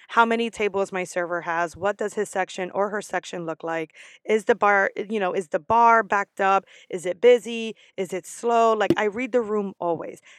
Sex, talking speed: female, 215 wpm